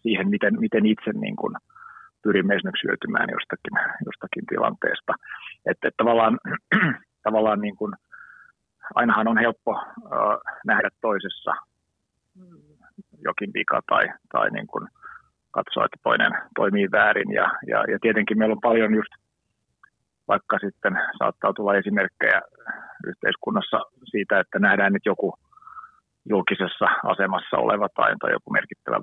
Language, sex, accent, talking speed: Finnish, male, native, 120 wpm